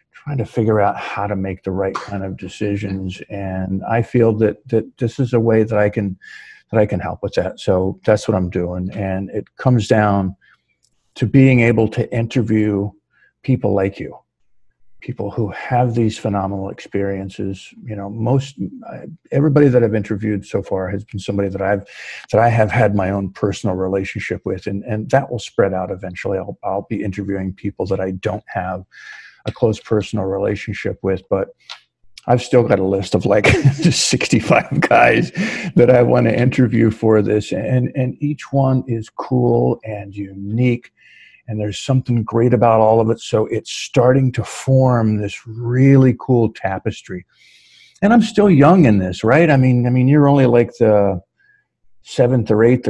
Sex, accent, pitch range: male, American, 100-125 Hz